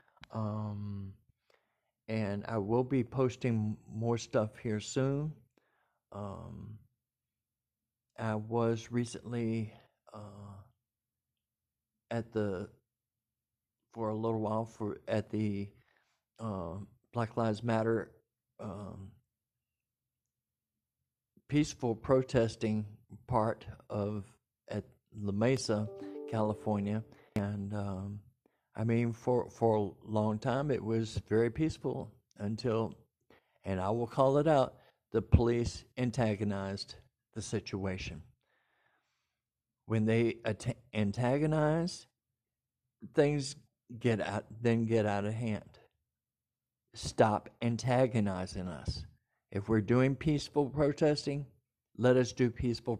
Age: 50-69